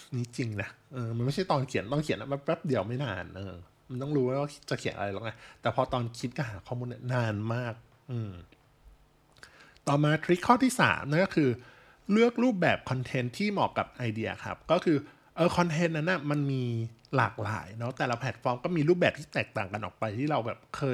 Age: 20-39